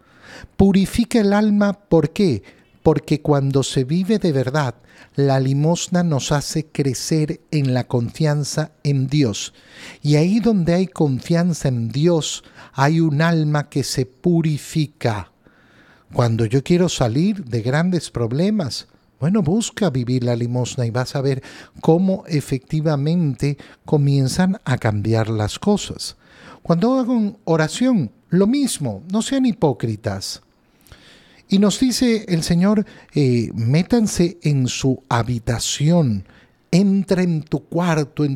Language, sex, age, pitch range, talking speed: Spanish, male, 50-69, 125-180 Hz, 125 wpm